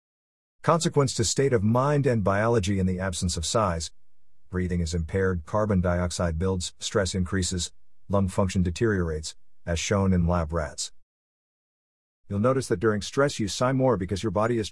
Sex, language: male, English